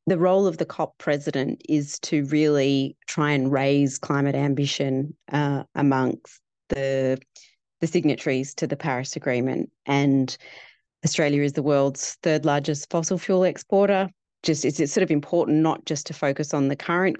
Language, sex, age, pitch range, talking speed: English, female, 30-49, 140-155 Hz, 160 wpm